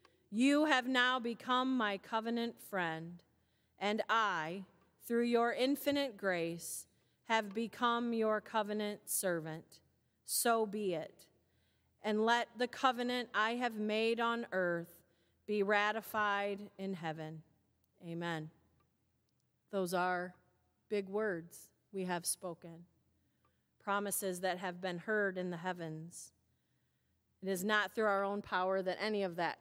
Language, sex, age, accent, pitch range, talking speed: English, female, 40-59, American, 170-225 Hz, 125 wpm